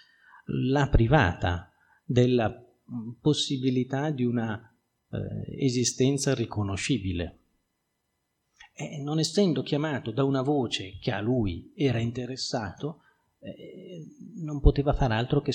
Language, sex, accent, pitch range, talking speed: Italian, male, native, 110-135 Hz, 100 wpm